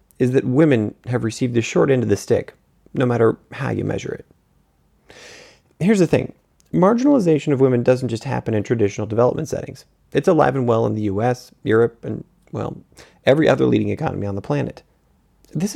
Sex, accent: male, American